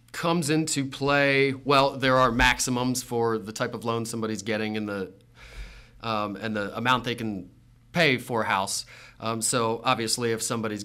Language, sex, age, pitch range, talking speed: English, male, 30-49, 115-135 Hz, 170 wpm